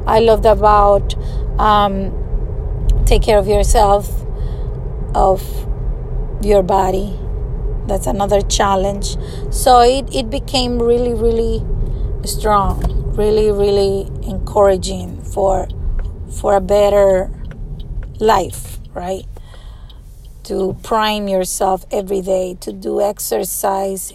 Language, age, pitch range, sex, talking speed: English, 30-49, 190-235 Hz, female, 95 wpm